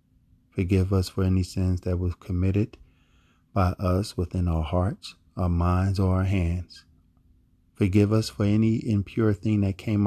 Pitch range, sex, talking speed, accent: 90-105 Hz, male, 155 wpm, American